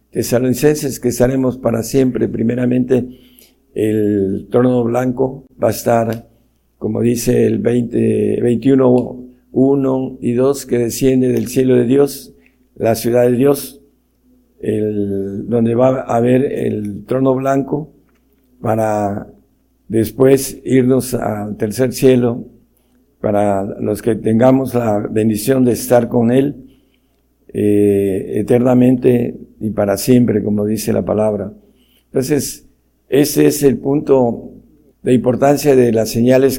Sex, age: male, 60-79